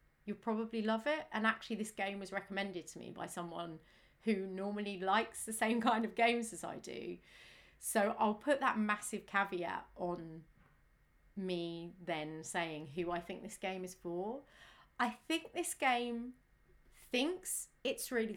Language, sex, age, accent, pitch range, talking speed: English, female, 30-49, British, 180-230 Hz, 160 wpm